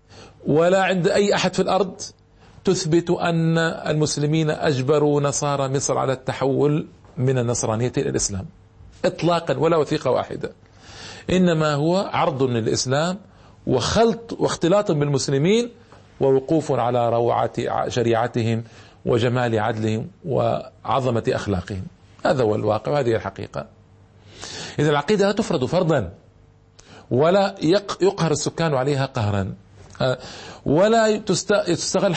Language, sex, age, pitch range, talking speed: Arabic, male, 50-69, 110-160 Hz, 100 wpm